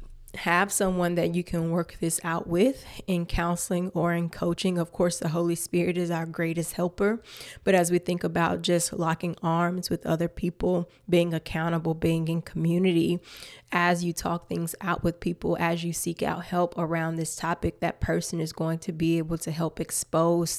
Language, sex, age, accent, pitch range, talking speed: English, female, 20-39, American, 165-180 Hz, 185 wpm